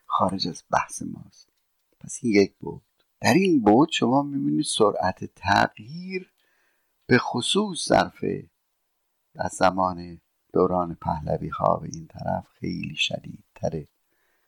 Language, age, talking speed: Persian, 60-79, 115 wpm